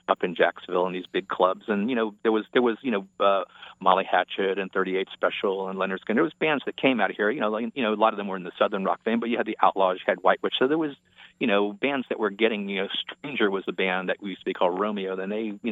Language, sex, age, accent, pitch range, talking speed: English, male, 40-59, American, 95-115 Hz, 315 wpm